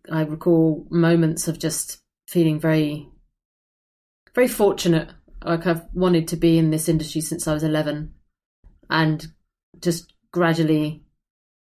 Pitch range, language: 155-180 Hz, English